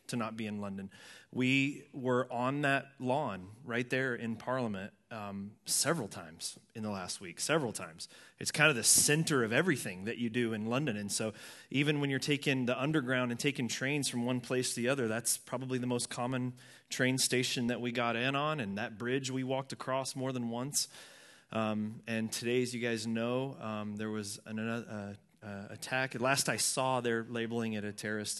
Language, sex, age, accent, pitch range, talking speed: English, male, 20-39, American, 110-130 Hz, 200 wpm